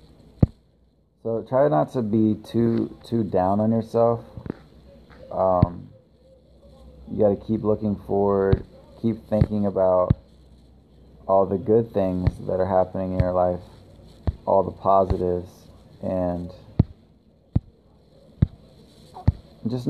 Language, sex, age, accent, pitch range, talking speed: English, male, 20-39, American, 90-105 Hz, 105 wpm